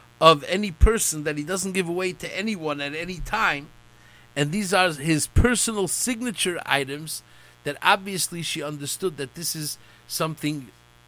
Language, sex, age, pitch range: English, male, 50-69, 115-190 Hz